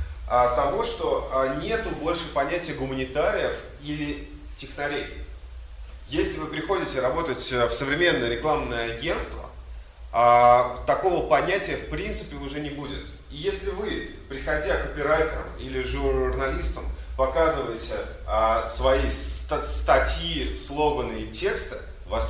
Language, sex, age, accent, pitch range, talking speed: Russian, male, 30-49, native, 115-155 Hz, 100 wpm